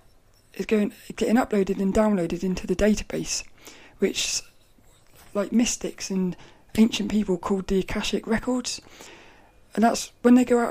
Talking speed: 140 wpm